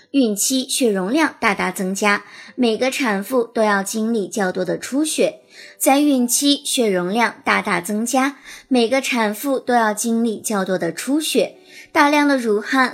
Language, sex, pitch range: Chinese, male, 195-270 Hz